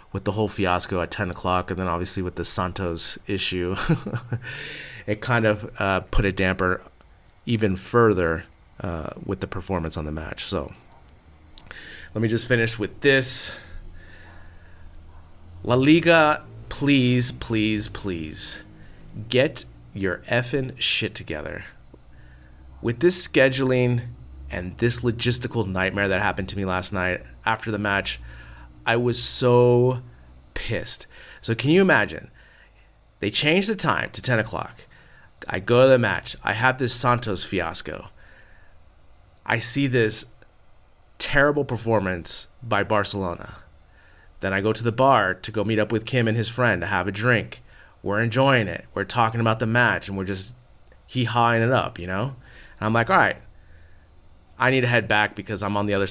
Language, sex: English, male